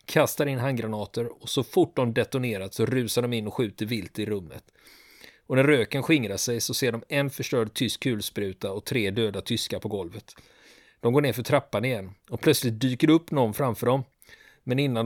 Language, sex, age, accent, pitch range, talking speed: Swedish, male, 30-49, native, 115-140 Hz, 200 wpm